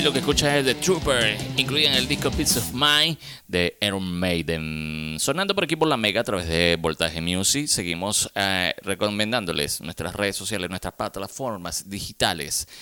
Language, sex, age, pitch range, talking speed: Spanish, male, 30-49, 90-125 Hz, 165 wpm